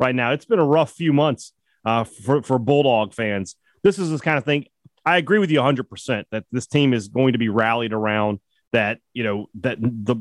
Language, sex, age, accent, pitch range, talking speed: English, male, 30-49, American, 110-155 Hz, 230 wpm